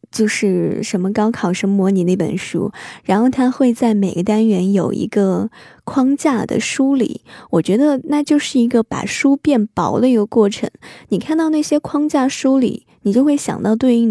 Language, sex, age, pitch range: Chinese, female, 10-29, 205-260 Hz